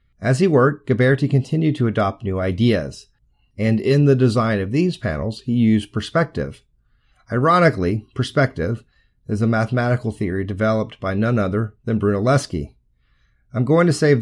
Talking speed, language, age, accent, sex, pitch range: 150 wpm, English, 40-59, American, male, 100-130 Hz